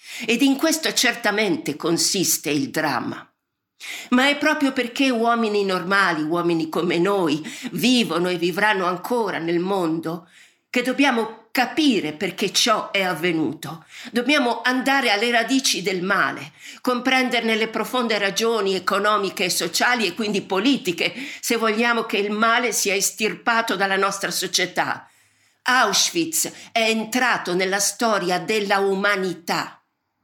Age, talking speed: 50-69, 125 wpm